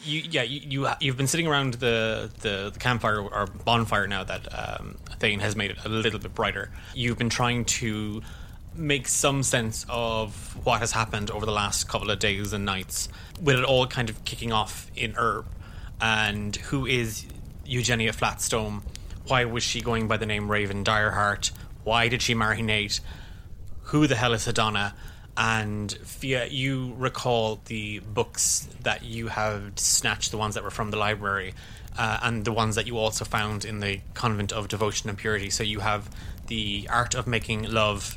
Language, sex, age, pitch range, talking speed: English, male, 20-39, 100-115 Hz, 185 wpm